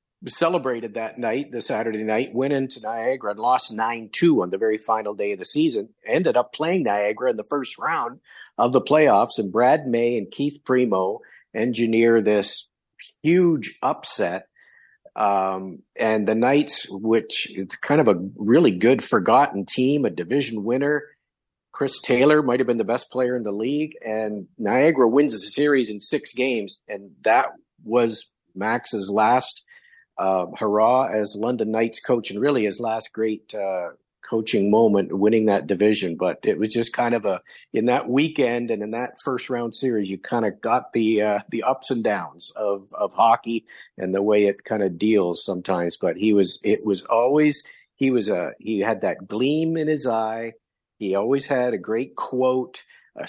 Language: English